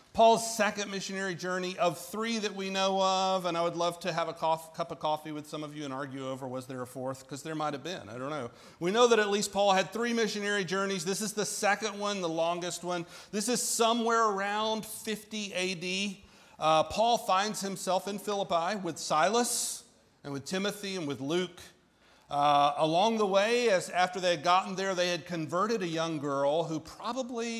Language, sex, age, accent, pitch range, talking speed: English, male, 40-59, American, 150-205 Hz, 205 wpm